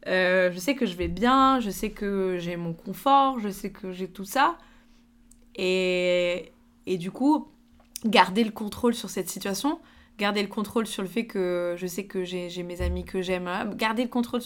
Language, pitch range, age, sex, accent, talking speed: French, 190-240 Hz, 20-39, female, French, 200 wpm